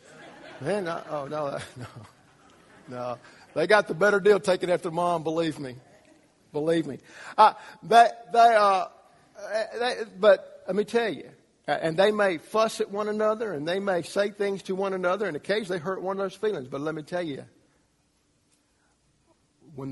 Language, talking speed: English, 170 wpm